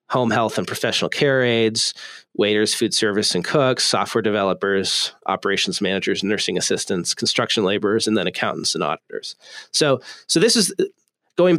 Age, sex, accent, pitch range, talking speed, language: 30-49, male, American, 110-150 Hz, 150 wpm, English